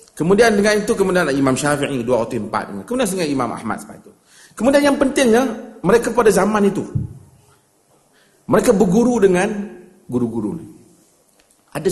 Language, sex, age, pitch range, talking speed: Malay, male, 50-69, 140-225 Hz, 130 wpm